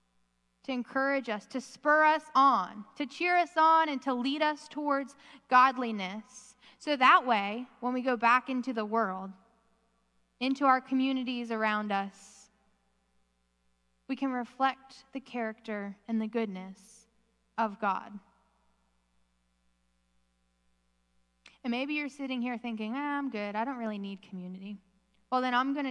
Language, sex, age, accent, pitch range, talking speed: English, female, 10-29, American, 195-260 Hz, 140 wpm